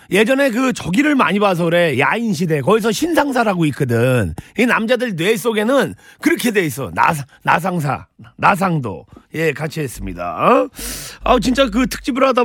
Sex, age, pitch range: male, 40-59, 165-235 Hz